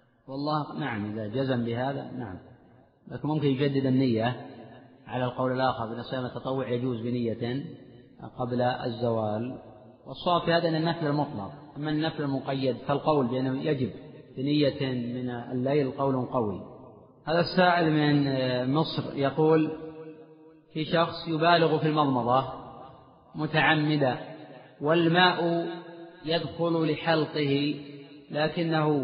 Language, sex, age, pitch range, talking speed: Arabic, male, 40-59, 135-165 Hz, 105 wpm